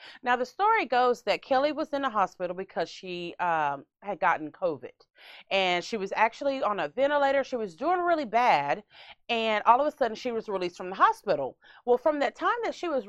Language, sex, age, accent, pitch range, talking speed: English, female, 30-49, American, 190-290 Hz, 210 wpm